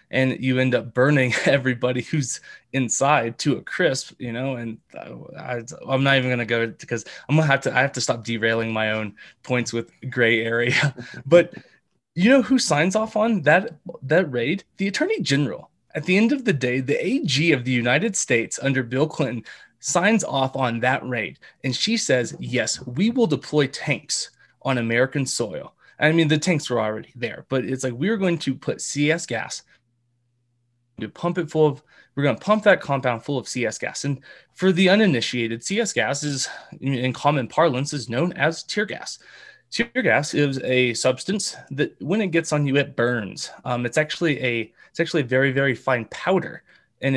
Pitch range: 125-165 Hz